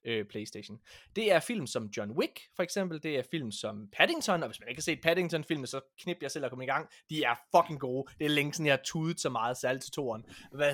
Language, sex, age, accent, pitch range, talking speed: Danish, male, 20-39, native, 130-185 Hz, 245 wpm